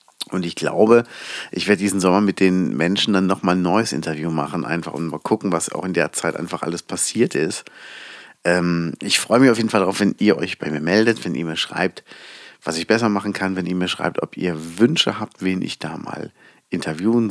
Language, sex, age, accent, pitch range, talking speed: German, male, 40-59, German, 85-100 Hz, 225 wpm